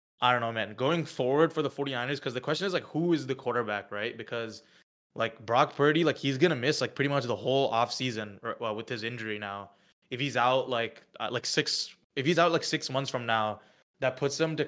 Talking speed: 235 wpm